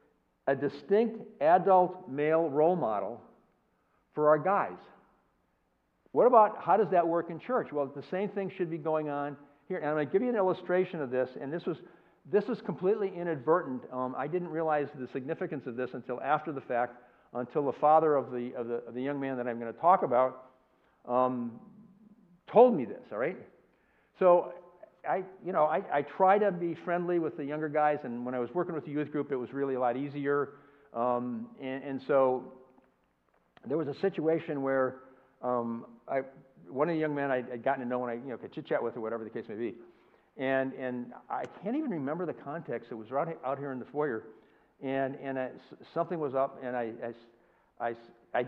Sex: male